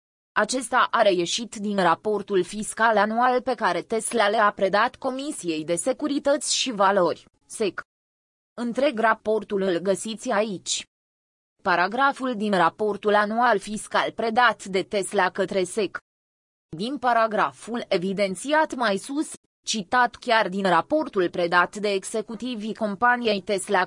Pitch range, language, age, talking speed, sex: 190-235 Hz, Romanian, 20-39, 120 wpm, female